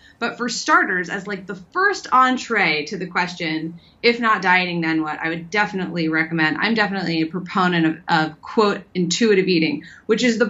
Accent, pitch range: American, 185-265 Hz